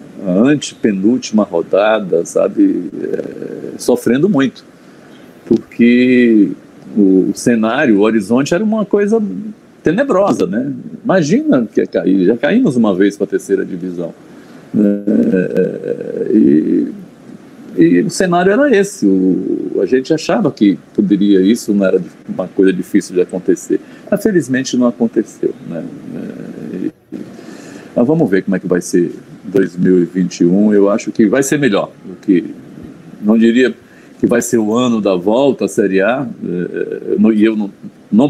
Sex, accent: male, Brazilian